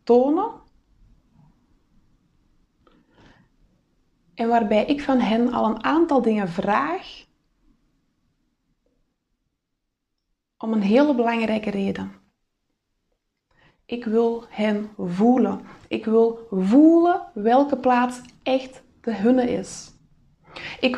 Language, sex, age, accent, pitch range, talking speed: Dutch, female, 20-39, Dutch, 220-275 Hz, 85 wpm